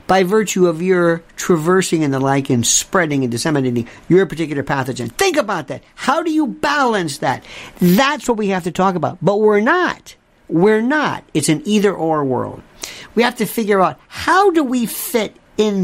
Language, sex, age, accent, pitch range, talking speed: English, male, 50-69, American, 160-235 Hz, 185 wpm